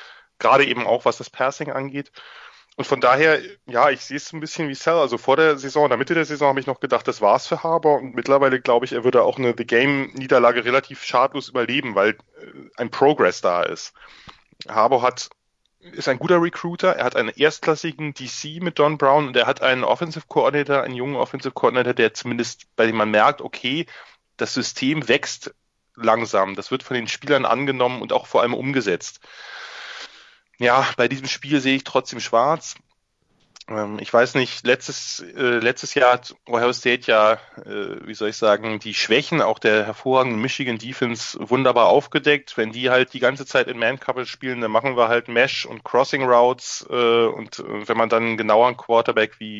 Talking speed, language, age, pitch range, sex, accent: 195 wpm, German, 10-29, 120-150 Hz, male, German